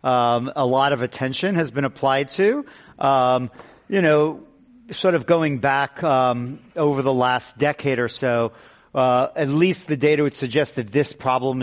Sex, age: male, 40-59